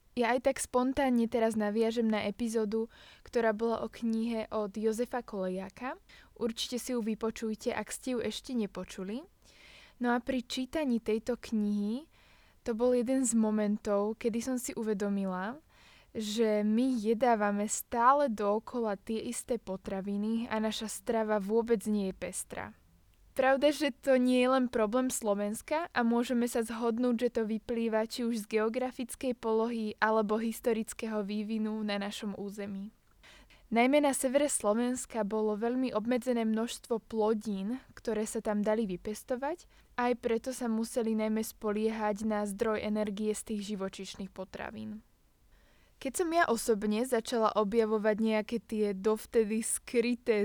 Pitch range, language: 215-245 Hz, Slovak